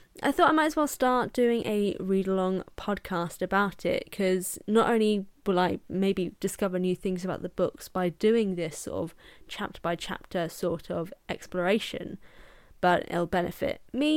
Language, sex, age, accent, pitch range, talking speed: English, female, 10-29, British, 180-240 Hz, 170 wpm